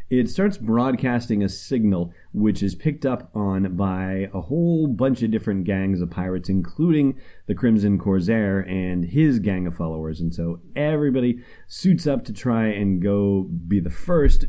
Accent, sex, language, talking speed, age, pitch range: American, male, English, 165 wpm, 30-49, 90-115 Hz